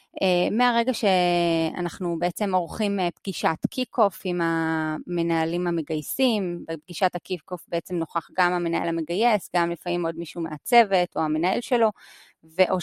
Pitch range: 175-205 Hz